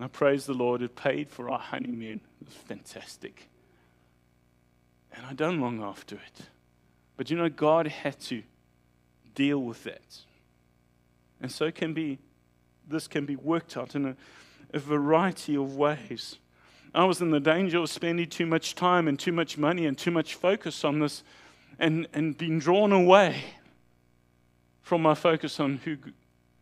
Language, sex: English, male